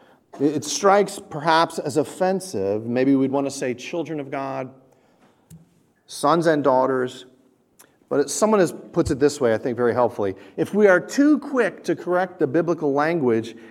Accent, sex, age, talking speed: American, male, 50-69, 160 wpm